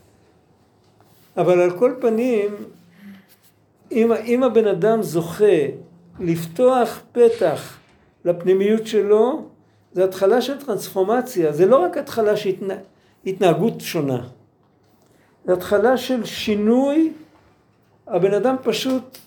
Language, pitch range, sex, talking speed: Hebrew, 185-245 Hz, male, 95 wpm